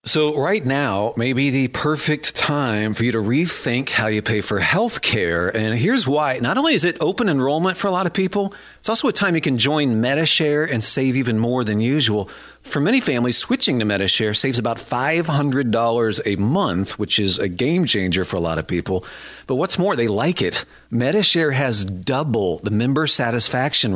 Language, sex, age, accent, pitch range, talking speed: English, male, 40-59, American, 110-155 Hz, 205 wpm